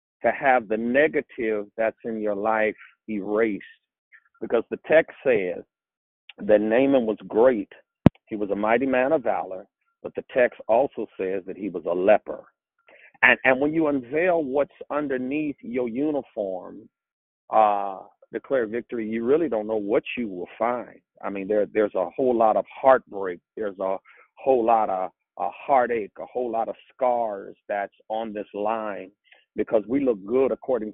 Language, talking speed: English, 165 wpm